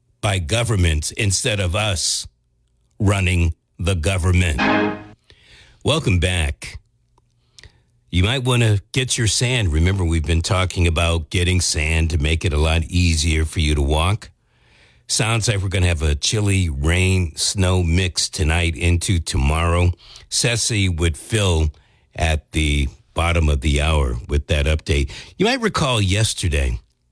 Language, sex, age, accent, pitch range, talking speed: English, male, 50-69, American, 80-105 Hz, 140 wpm